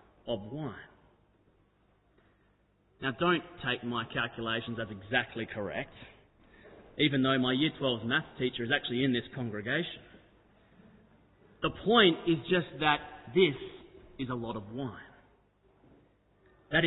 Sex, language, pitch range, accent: male, English, 130-220 Hz, Australian